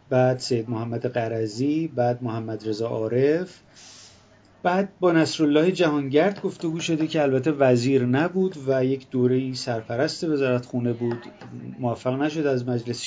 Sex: male